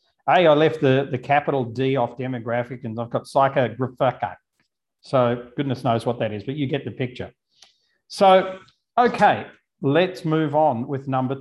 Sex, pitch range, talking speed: male, 135-170 Hz, 165 wpm